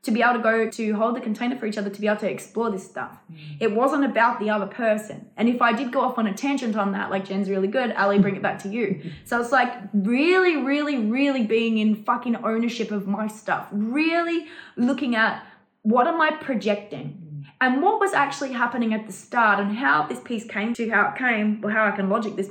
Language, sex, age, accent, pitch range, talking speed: English, female, 20-39, Australian, 200-235 Hz, 235 wpm